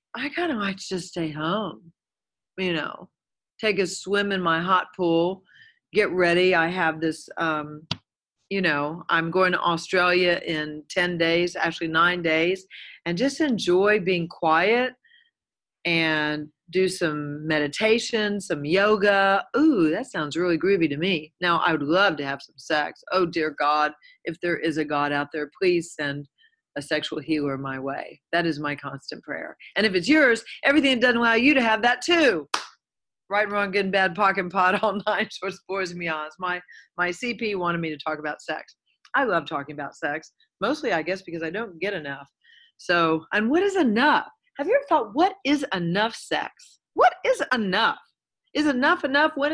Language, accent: English, American